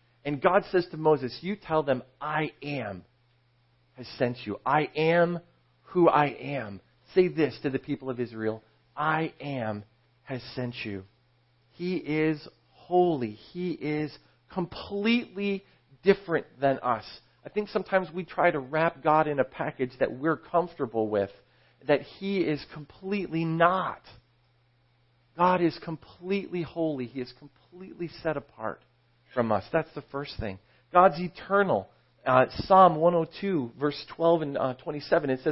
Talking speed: 140 wpm